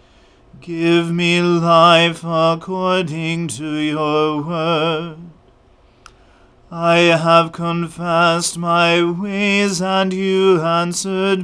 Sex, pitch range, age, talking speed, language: male, 165-175 Hz, 40-59, 80 wpm, English